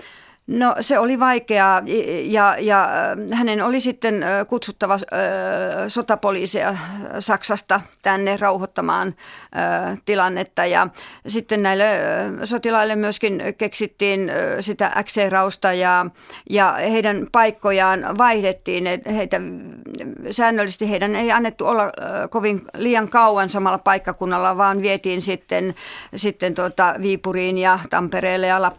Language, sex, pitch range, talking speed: Finnish, female, 190-220 Hz, 100 wpm